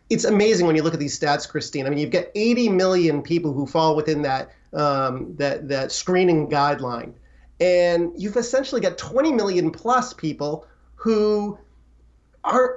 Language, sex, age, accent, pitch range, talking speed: English, male, 30-49, American, 150-195 Hz, 165 wpm